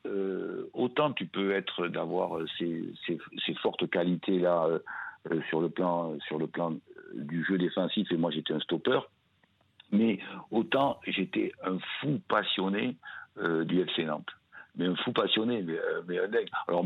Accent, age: French, 60-79